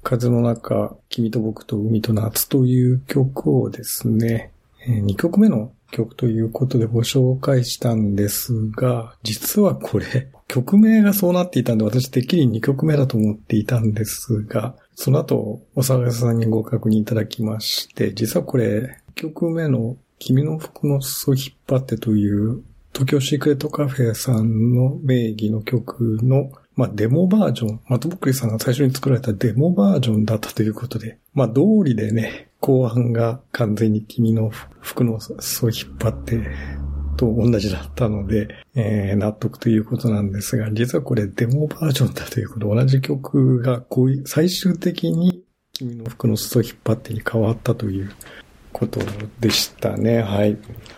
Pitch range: 110-130 Hz